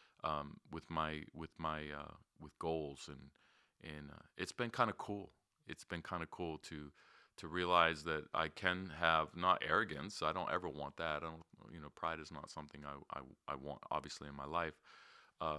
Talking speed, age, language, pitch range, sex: 200 wpm, 40-59, English, 75-85 Hz, male